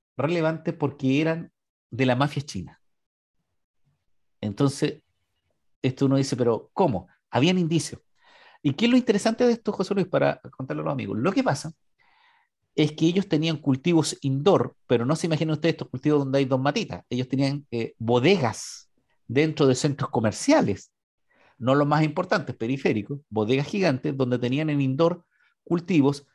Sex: male